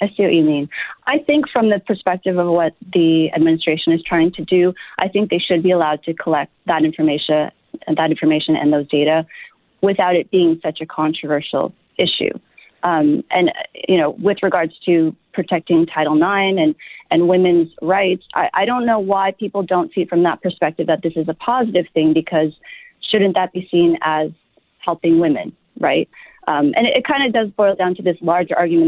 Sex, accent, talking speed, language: female, American, 195 wpm, English